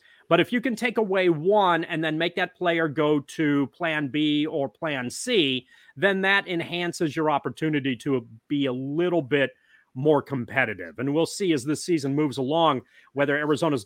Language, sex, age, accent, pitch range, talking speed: English, male, 30-49, American, 140-180 Hz, 180 wpm